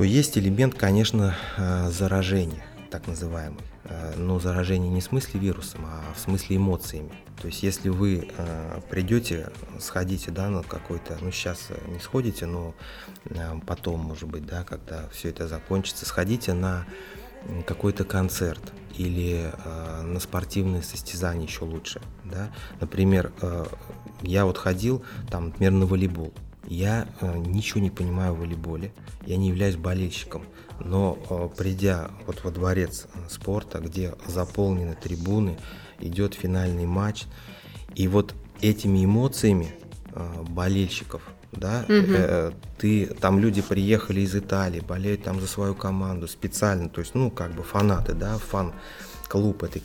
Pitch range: 85-100 Hz